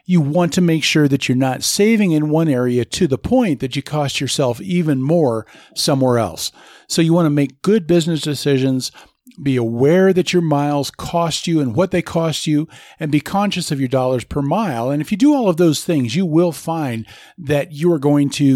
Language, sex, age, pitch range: English, male, 40-59, 125-165 Hz